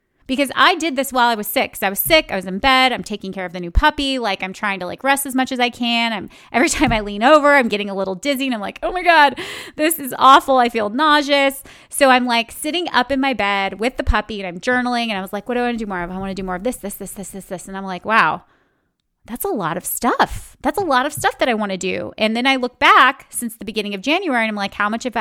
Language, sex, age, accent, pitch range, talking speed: English, female, 30-49, American, 210-280 Hz, 305 wpm